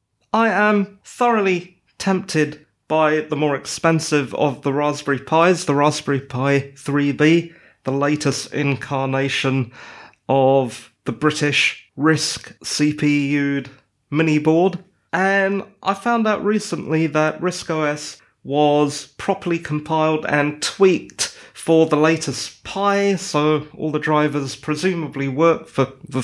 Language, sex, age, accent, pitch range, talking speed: English, male, 30-49, British, 140-180 Hz, 115 wpm